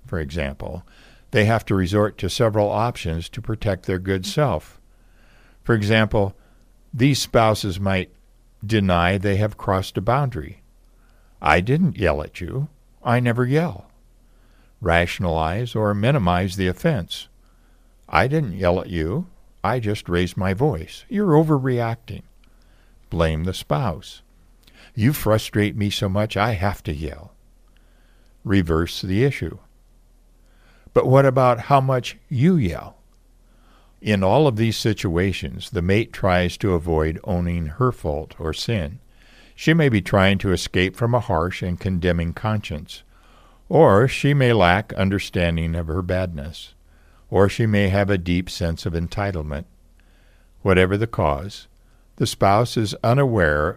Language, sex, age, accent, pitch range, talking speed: English, male, 60-79, American, 85-115 Hz, 135 wpm